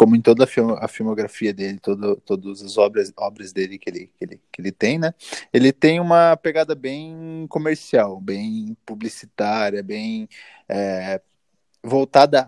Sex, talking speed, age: male, 150 wpm, 20-39